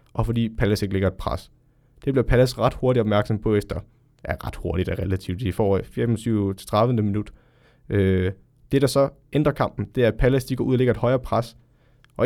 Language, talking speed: Danish, 200 wpm